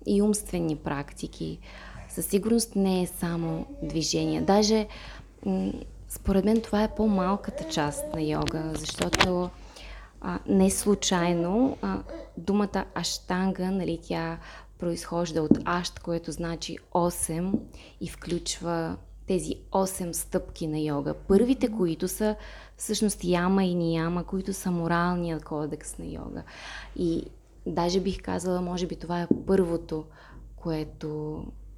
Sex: female